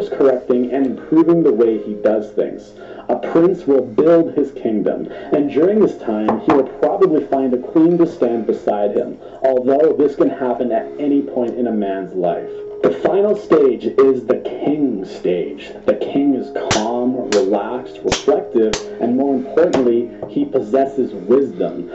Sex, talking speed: male, 160 wpm